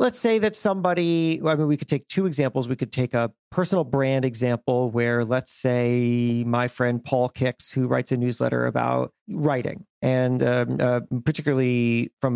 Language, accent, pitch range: English, American, 125-170 Hz